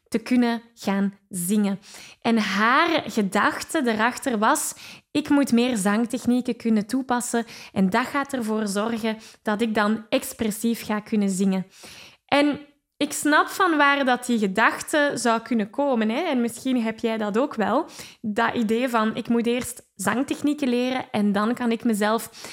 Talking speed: 155 wpm